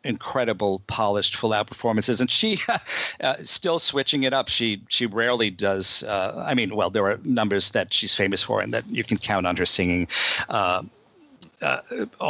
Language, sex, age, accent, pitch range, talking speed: English, male, 50-69, American, 100-125 Hz, 180 wpm